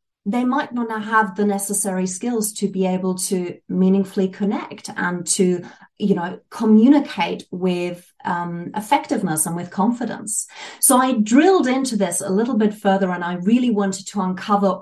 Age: 30-49